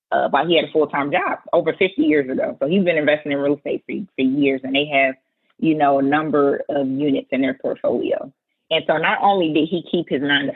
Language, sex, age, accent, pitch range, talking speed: English, female, 20-39, American, 145-210 Hz, 250 wpm